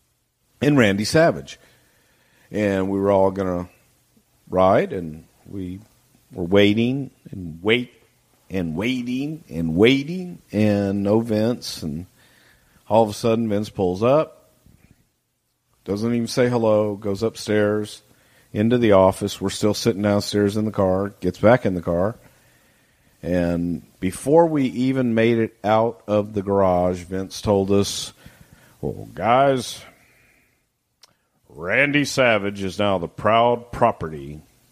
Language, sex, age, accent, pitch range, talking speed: English, male, 50-69, American, 95-125 Hz, 130 wpm